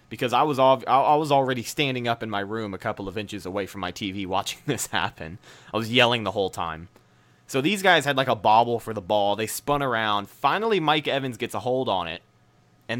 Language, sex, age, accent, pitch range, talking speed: English, male, 20-39, American, 100-130 Hz, 235 wpm